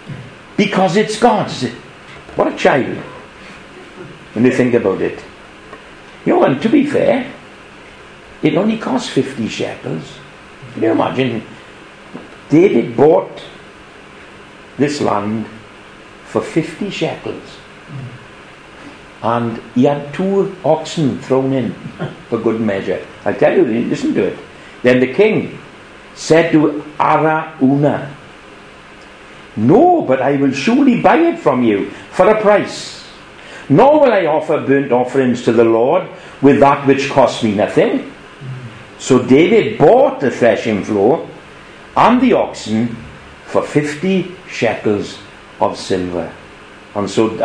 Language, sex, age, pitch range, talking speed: English, male, 60-79, 110-155 Hz, 120 wpm